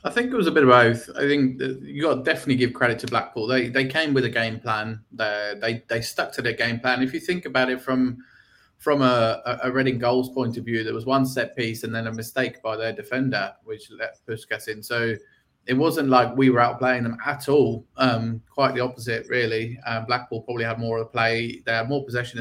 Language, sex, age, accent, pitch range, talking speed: English, male, 20-39, British, 115-130 Hz, 240 wpm